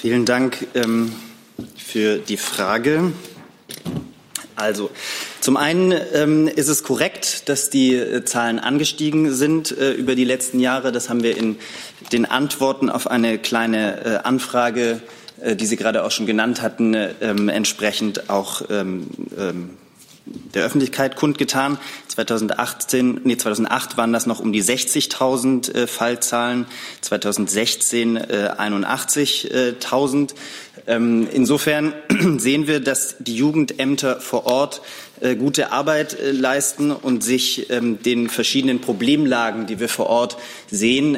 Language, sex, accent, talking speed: German, male, German, 120 wpm